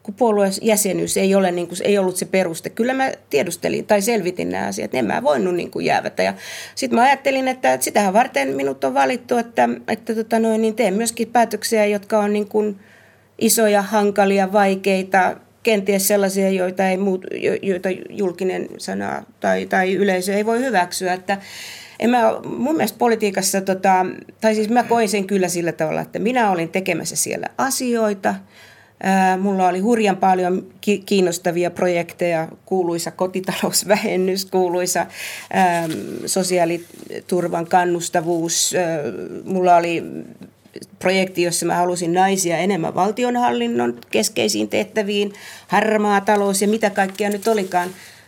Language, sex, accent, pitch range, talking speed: Finnish, female, native, 175-215 Hz, 140 wpm